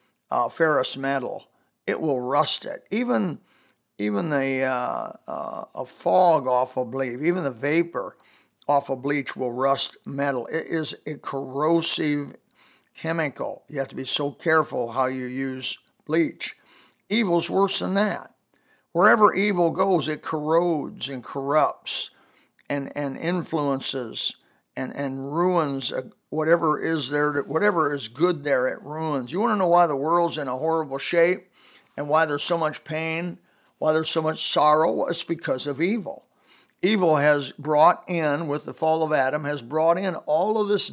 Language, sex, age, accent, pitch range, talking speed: English, male, 60-79, American, 140-175 Hz, 160 wpm